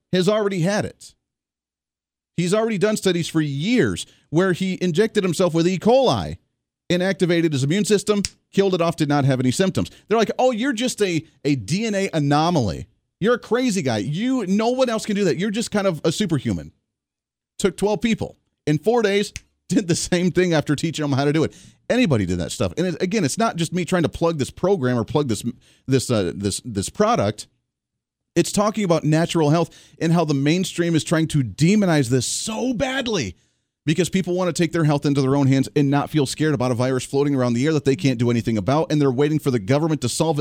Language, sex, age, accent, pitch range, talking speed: English, male, 40-59, American, 140-195 Hz, 220 wpm